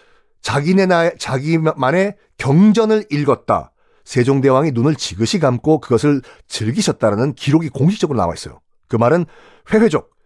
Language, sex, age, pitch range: Korean, male, 40-59, 125-190 Hz